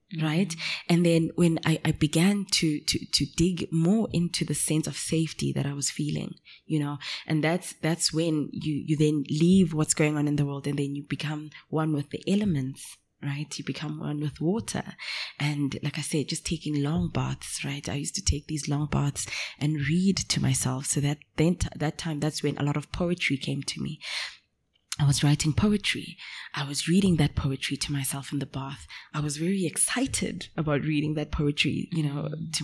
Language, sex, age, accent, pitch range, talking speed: English, female, 20-39, South African, 145-165 Hz, 200 wpm